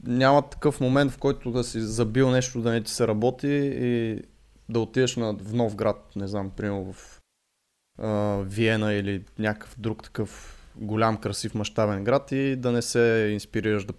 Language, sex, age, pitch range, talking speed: Bulgarian, male, 20-39, 105-135 Hz, 170 wpm